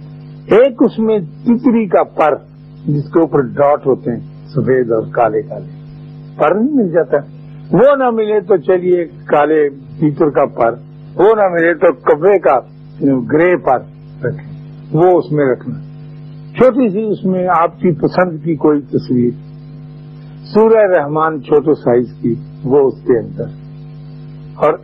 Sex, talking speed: male, 150 wpm